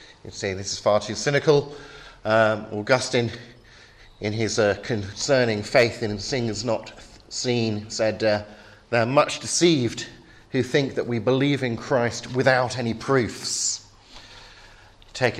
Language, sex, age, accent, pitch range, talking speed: English, male, 40-59, British, 100-120 Hz, 135 wpm